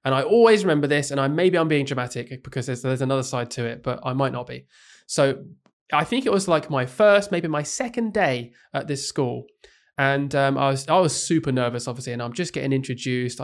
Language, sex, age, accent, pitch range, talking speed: English, male, 20-39, British, 125-155 Hz, 230 wpm